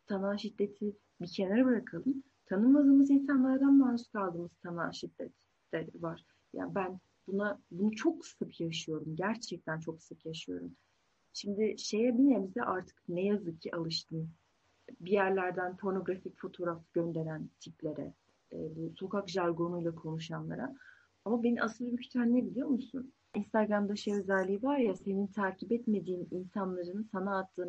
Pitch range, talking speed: 180-250 Hz, 125 wpm